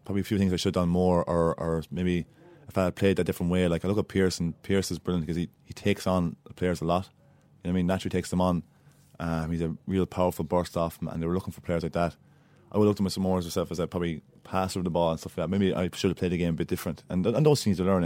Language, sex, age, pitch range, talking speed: English, male, 20-39, 85-95 Hz, 325 wpm